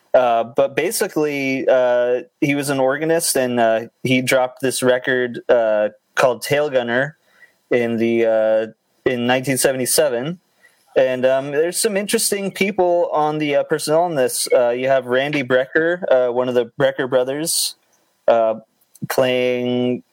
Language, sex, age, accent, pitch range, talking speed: English, male, 20-39, American, 115-140 Hz, 140 wpm